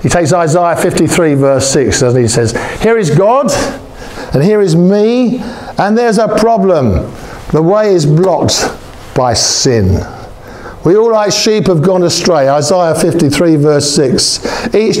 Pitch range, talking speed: 140-200 Hz, 150 wpm